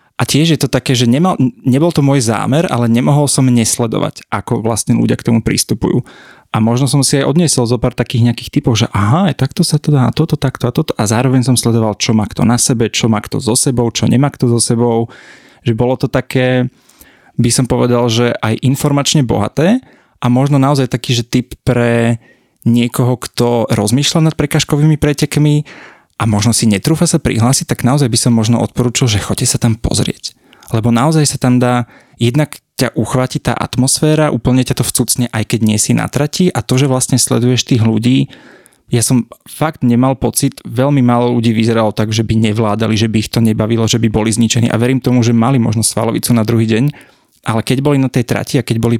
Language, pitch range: Slovak, 115-135 Hz